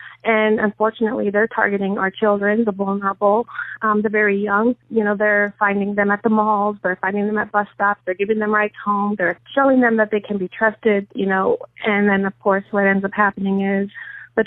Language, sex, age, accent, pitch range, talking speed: English, female, 30-49, American, 200-225 Hz, 210 wpm